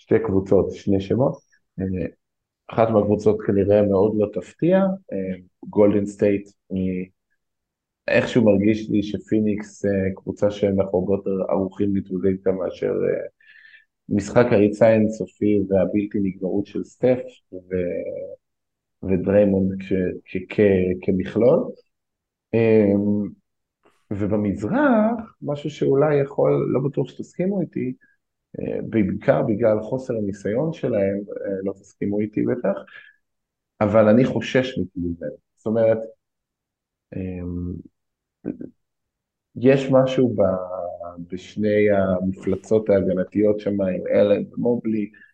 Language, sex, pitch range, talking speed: Hebrew, male, 95-115 Hz, 90 wpm